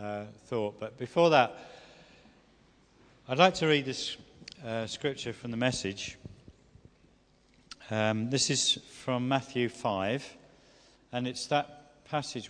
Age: 50-69